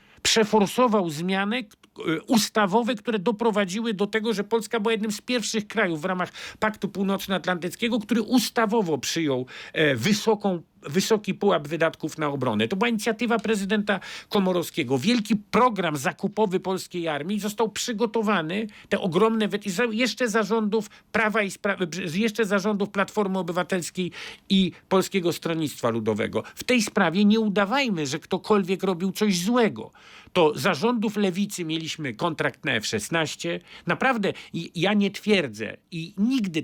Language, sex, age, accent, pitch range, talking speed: Polish, male, 50-69, native, 170-220 Hz, 130 wpm